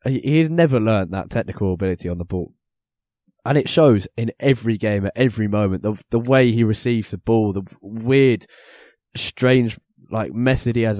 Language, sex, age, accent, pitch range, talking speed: English, male, 10-29, British, 95-120 Hz, 180 wpm